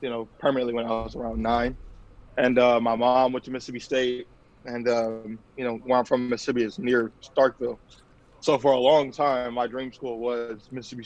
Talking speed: 200 wpm